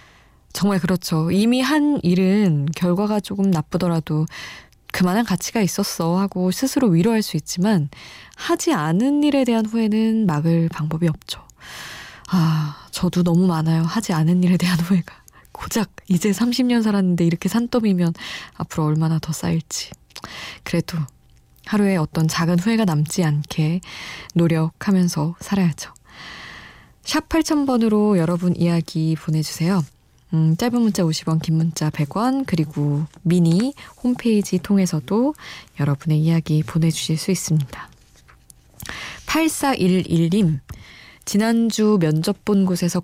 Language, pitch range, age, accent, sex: Korean, 160-205 Hz, 20-39, native, female